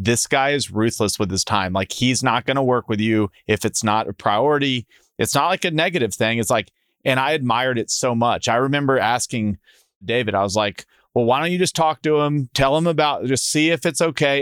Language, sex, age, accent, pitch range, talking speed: English, male, 30-49, American, 110-145 Hz, 235 wpm